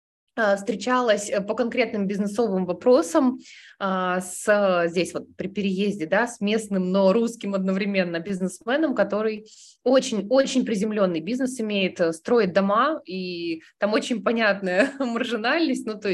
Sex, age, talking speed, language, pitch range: female, 20-39, 120 wpm, Russian, 190-250 Hz